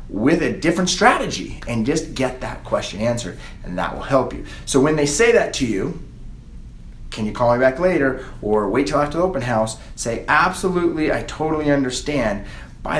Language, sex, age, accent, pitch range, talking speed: English, male, 30-49, American, 120-170 Hz, 190 wpm